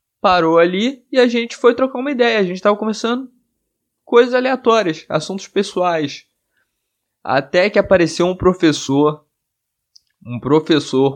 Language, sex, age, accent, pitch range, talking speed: Portuguese, male, 20-39, Brazilian, 125-175 Hz, 130 wpm